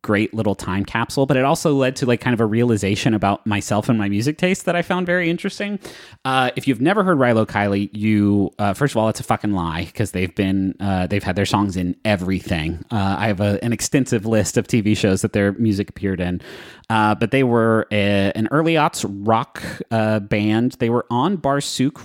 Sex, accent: male, American